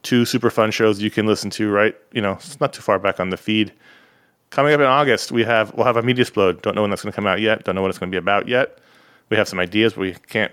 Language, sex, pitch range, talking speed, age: English, male, 100-125 Hz, 315 wpm, 30-49